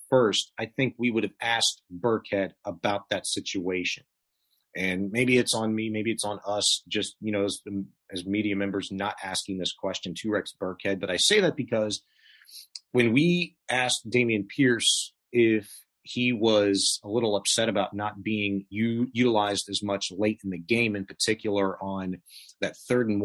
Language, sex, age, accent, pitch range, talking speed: English, male, 30-49, American, 100-115 Hz, 170 wpm